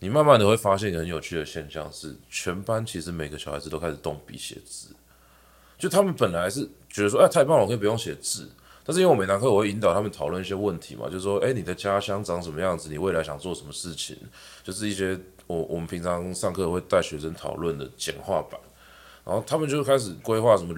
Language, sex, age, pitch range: Chinese, male, 20-39, 80-110 Hz